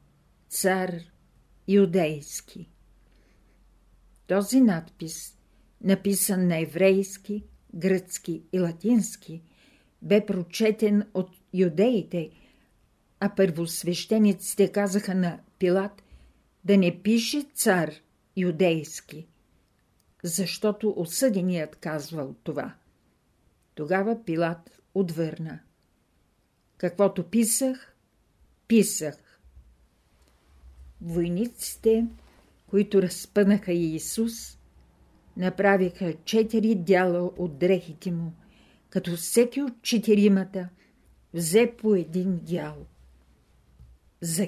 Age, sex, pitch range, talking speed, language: 50-69, female, 165-205 Hz, 75 wpm, Bulgarian